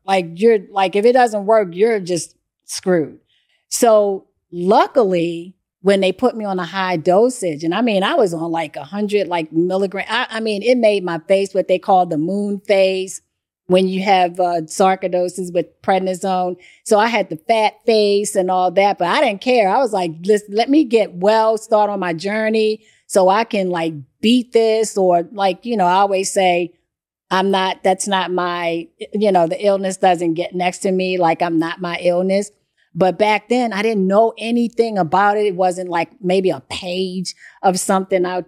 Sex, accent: female, American